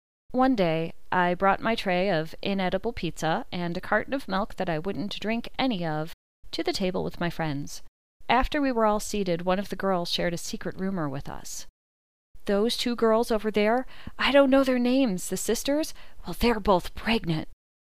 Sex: female